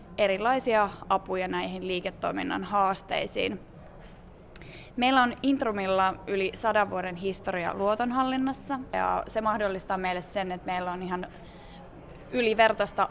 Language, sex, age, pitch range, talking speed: Finnish, female, 20-39, 185-225 Hz, 105 wpm